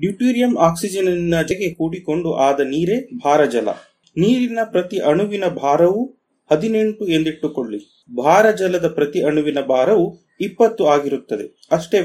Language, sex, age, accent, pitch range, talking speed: Kannada, male, 30-49, native, 155-205 Hz, 100 wpm